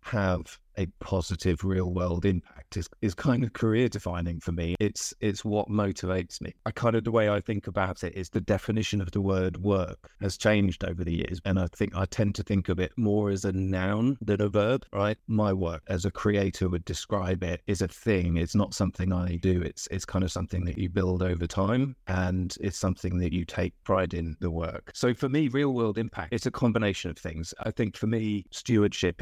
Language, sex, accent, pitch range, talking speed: English, male, British, 90-105 Hz, 225 wpm